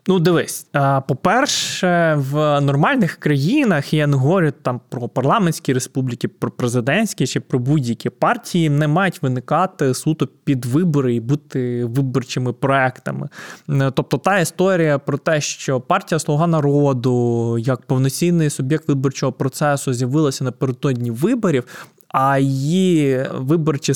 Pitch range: 135-160 Hz